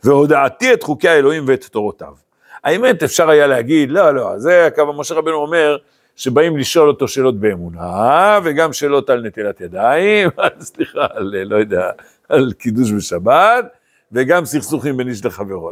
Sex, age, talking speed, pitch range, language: male, 60-79, 150 wpm, 110-185 Hz, Hebrew